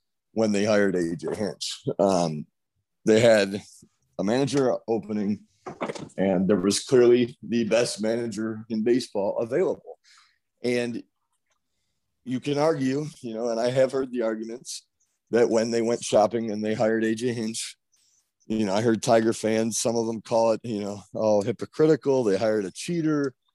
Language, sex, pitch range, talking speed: English, male, 110-135 Hz, 160 wpm